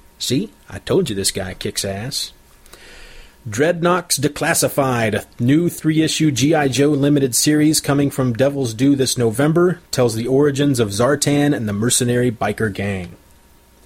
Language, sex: English, male